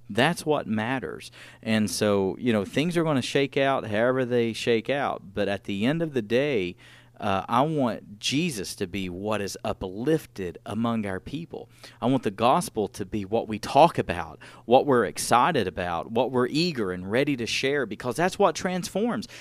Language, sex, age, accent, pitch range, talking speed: English, male, 40-59, American, 105-145 Hz, 190 wpm